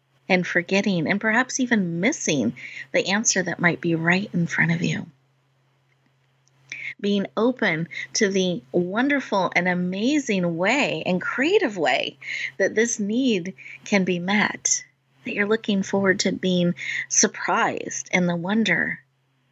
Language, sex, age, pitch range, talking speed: English, female, 30-49, 140-185 Hz, 130 wpm